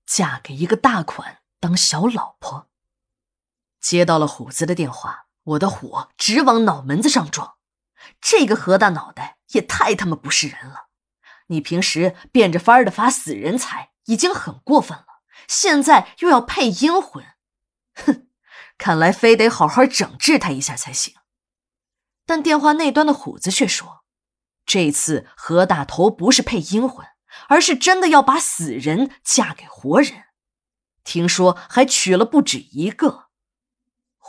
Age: 20-39